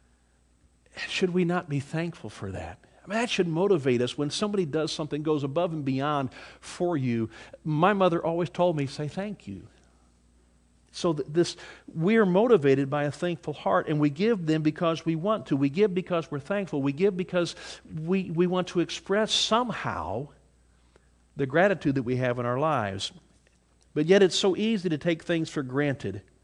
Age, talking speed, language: 50-69, 180 wpm, English